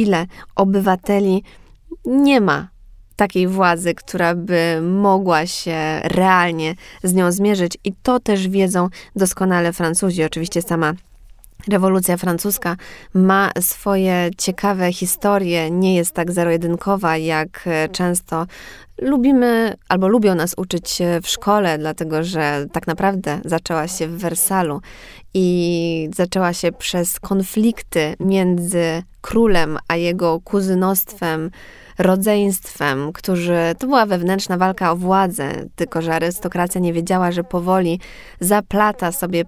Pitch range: 165-190 Hz